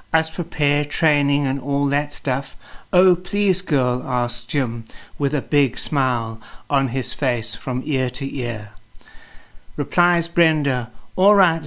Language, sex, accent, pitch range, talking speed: English, male, British, 125-155 Hz, 135 wpm